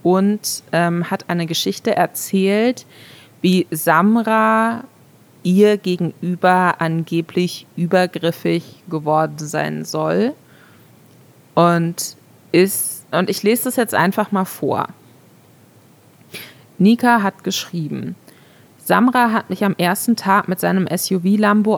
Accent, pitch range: German, 165-205 Hz